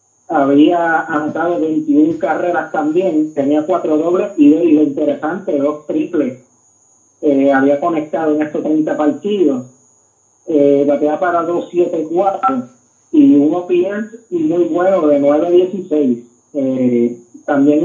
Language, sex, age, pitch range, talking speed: Spanish, male, 30-49, 155-190 Hz, 130 wpm